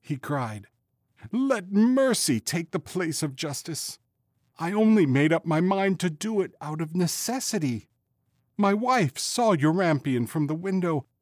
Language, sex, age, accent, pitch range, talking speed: English, male, 50-69, American, 105-155 Hz, 150 wpm